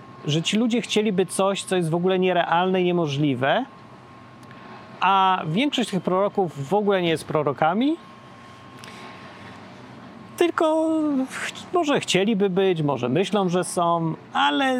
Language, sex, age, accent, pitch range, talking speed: Polish, male, 40-59, native, 155-215 Hz, 125 wpm